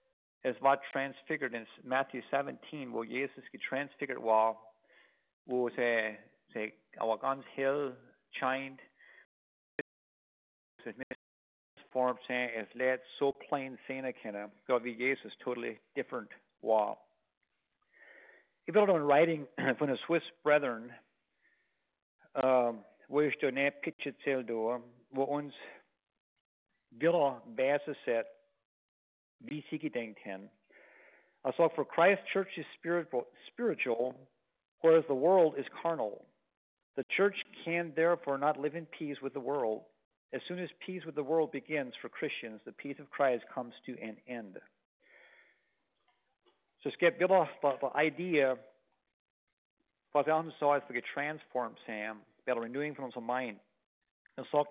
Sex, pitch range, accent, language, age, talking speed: male, 120-155 Hz, American, English, 50-69, 115 wpm